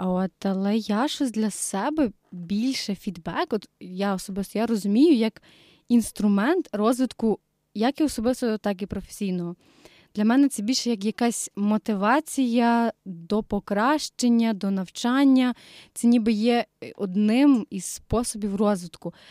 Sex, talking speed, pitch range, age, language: female, 120 wpm, 195-235 Hz, 20-39, Ukrainian